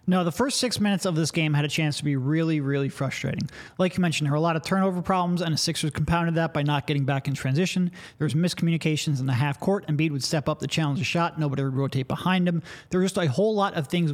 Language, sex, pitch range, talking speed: English, male, 145-180 Hz, 285 wpm